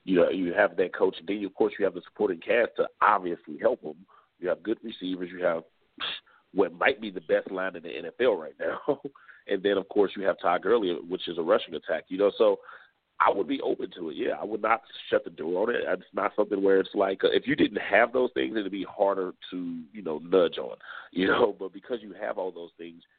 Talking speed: 250 wpm